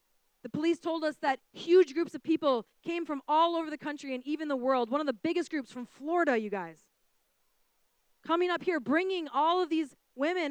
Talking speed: 205 wpm